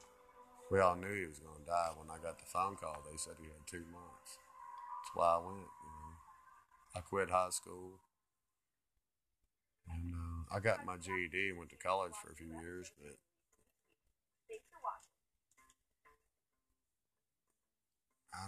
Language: English